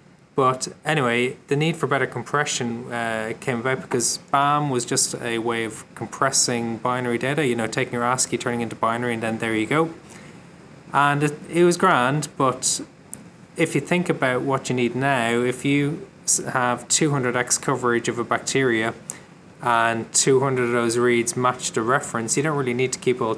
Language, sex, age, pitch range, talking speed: English, male, 20-39, 115-145 Hz, 180 wpm